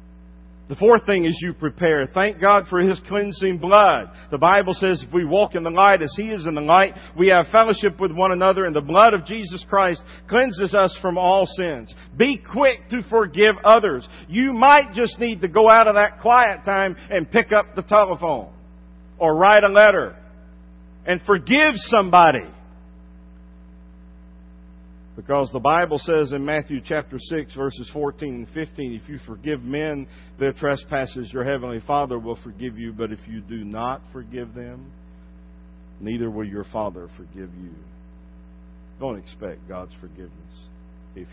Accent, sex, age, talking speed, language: American, male, 50-69, 165 wpm, English